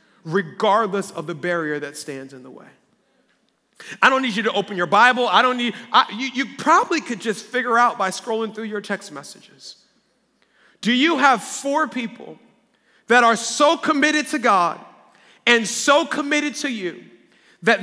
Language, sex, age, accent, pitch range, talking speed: English, male, 40-59, American, 205-270 Hz, 170 wpm